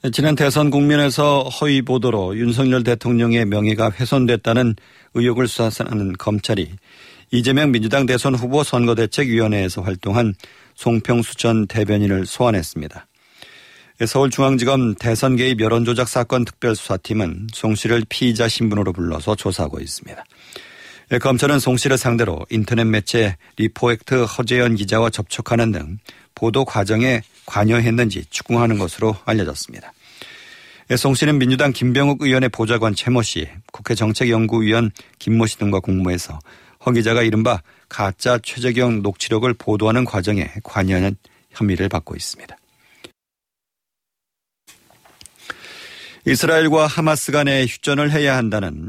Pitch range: 105-125 Hz